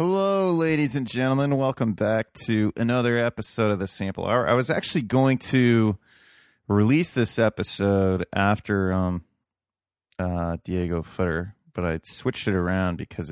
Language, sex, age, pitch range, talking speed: English, male, 30-49, 90-120 Hz, 145 wpm